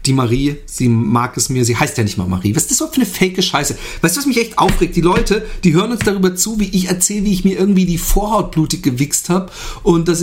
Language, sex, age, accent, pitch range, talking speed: German, male, 40-59, German, 125-190 Hz, 275 wpm